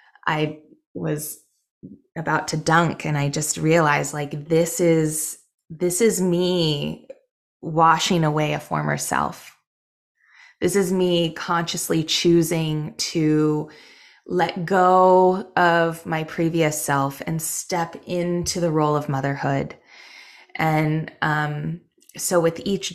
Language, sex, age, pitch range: English, female, 20-39, 155-195 Hz